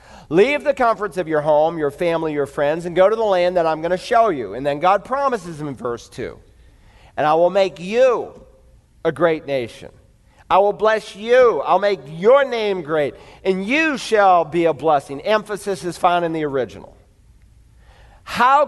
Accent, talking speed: American, 190 wpm